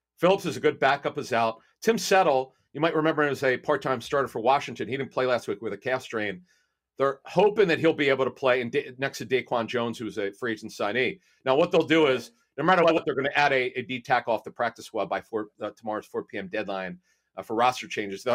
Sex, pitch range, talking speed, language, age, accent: male, 120-150 Hz, 255 wpm, English, 40-59, American